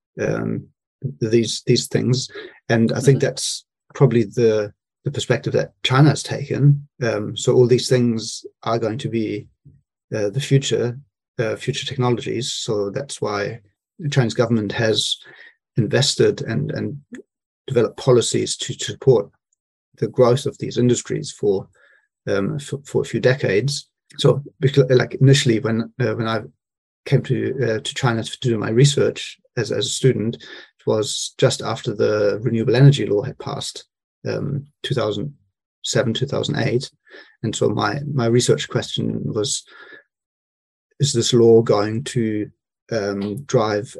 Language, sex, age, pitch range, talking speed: English, male, 30-49, 110-135 Hz, 145 wpm